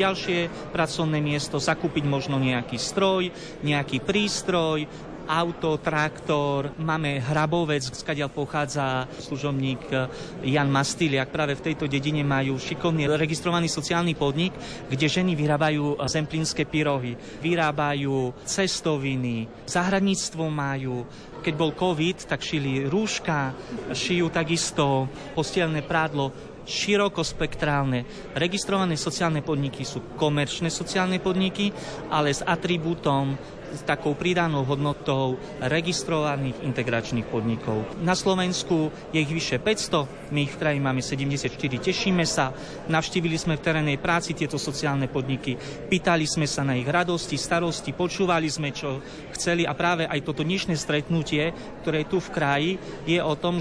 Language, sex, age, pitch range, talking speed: Slovak, male, 30-49, 140-170 Hz, 125 wpm